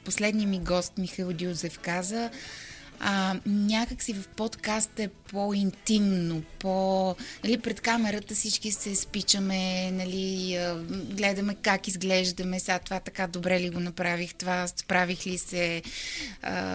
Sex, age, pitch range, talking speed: female, 20-39, 180-205 Hz, 130 wpm